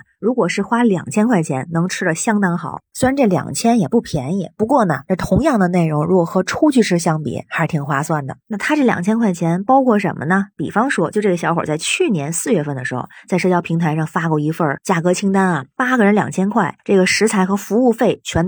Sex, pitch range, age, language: female, 160-225 Hz, 20-39, Chinese